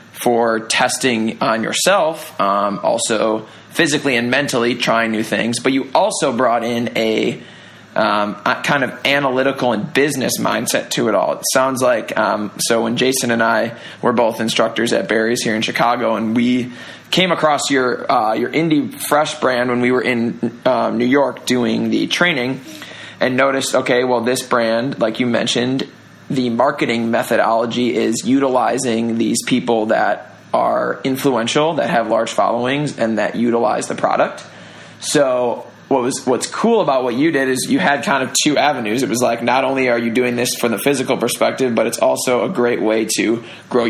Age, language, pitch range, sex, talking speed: 20-39, English, 115-130 Hz, male, 180 wpm